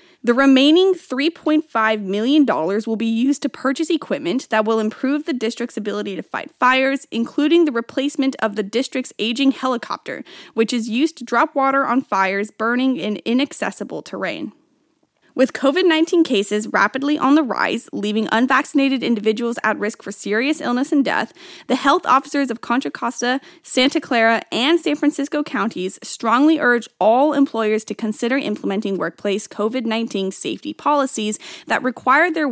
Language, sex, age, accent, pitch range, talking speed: English, female, 10-29, American, 220-275 Hz, 150 wpm